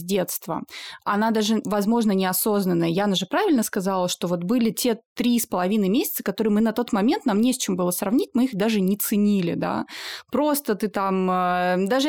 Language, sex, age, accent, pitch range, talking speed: Russian, female, 20-39, native, 195-250 Hz, 190 wpm